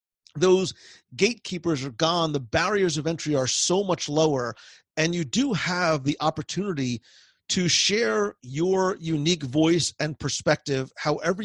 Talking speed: 135 wpm